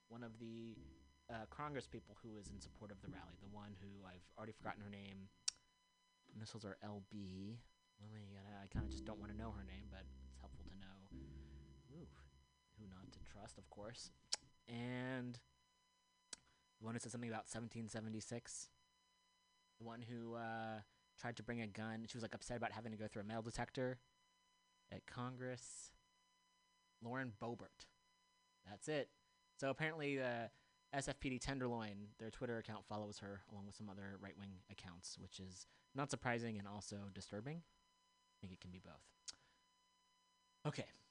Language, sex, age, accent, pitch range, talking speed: English, male, 30-49, American, 100-135 Hz, 160 wpm